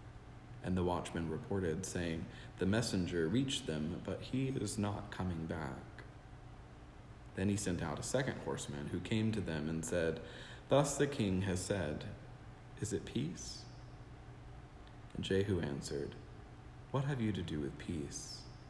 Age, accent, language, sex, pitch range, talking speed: 40-59, American, English, male, 85-115 Hz, 150 wpm